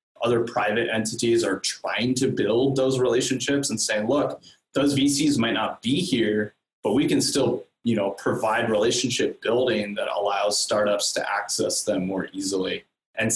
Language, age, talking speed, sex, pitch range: English, 20-39, 160 wpm, male, 100-125 Hz